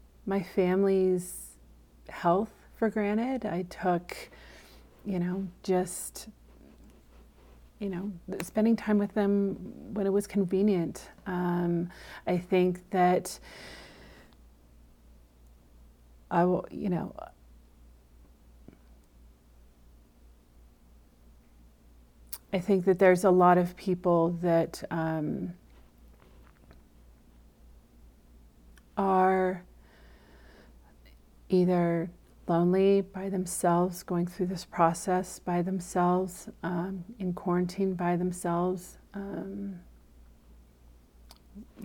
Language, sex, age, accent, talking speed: English, female, 30-49, American, 80 wpm